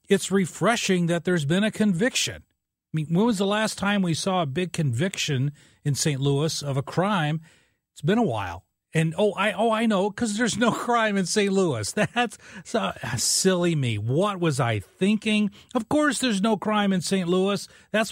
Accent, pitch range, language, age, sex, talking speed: American, 130-185 Hz, English, 40-59, male, 195 wpm